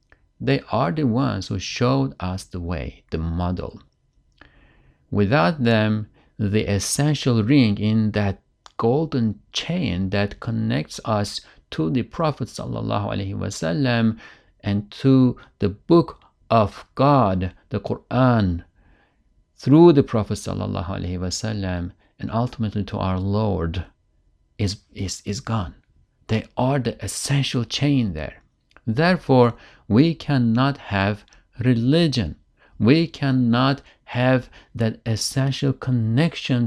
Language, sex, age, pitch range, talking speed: English, male, 50-69, 95-130 Hz, 105 wpm